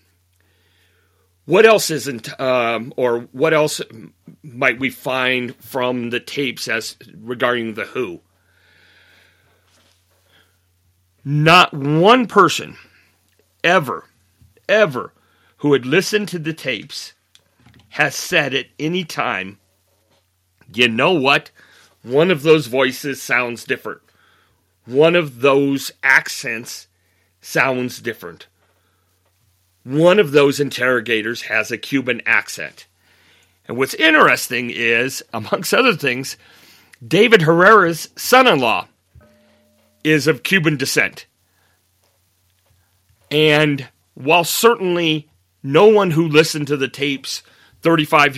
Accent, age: American, 40-59